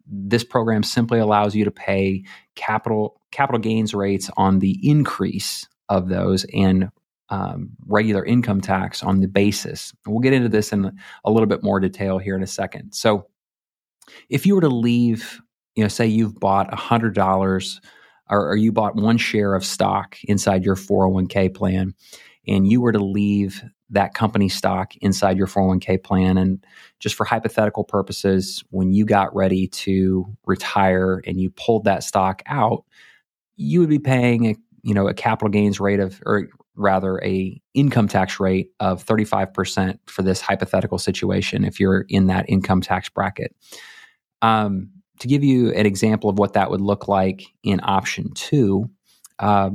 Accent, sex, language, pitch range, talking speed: American, male, English, 95-110 Hz, 170 wpm